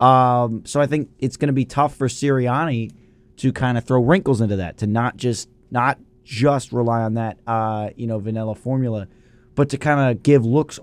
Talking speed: 205 wpm